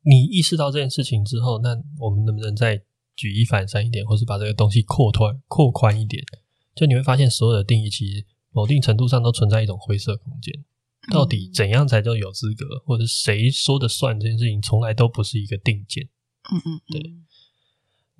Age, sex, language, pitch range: 20-39, male, Chinese, 105-130 Hz